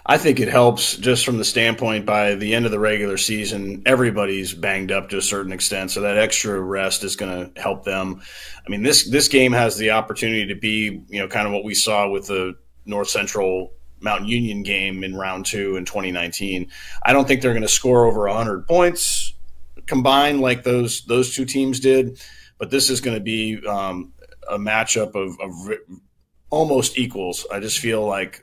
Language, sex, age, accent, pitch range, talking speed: English, male, 30-49, American, 95-115 Hz, 200 wpm